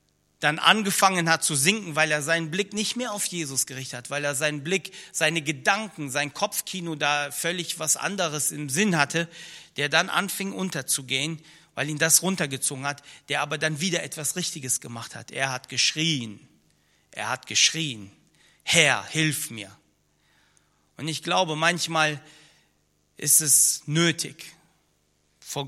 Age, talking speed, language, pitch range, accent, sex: 40-59, 150 wpm, German, 130-165 Hz, German, male